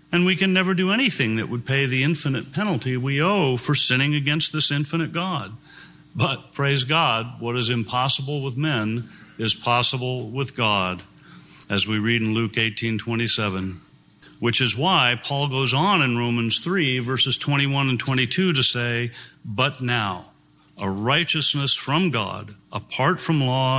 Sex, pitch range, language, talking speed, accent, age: male, 115-150 Hz, English, 155 wpm, American, 50-69